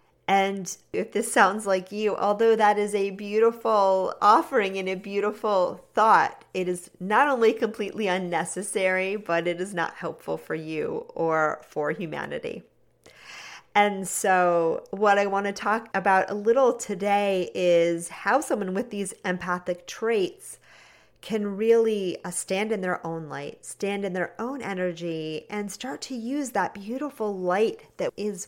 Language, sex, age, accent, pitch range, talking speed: English, female, 40-59, American, 175-215 Hz, 150 wpm